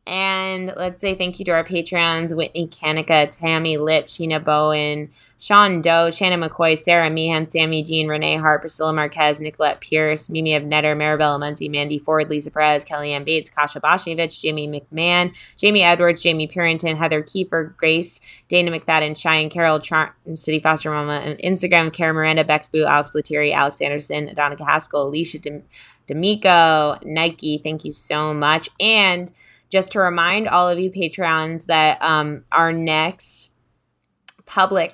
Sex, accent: female, American